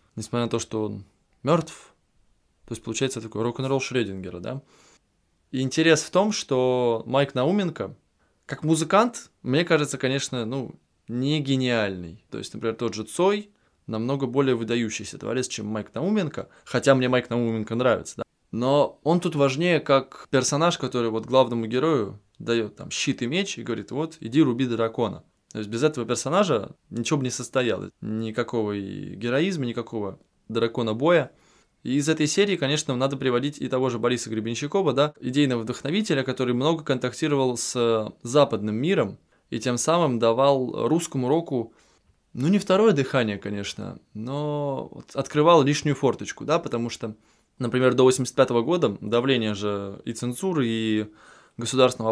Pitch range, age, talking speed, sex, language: 115-145 Hz, 20-39, 145 wpm, male, Russian